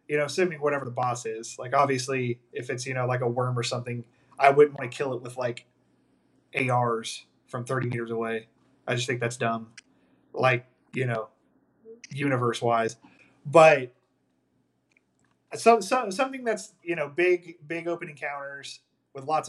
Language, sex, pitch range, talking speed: English, male, 125-140 Hz, 165 wpm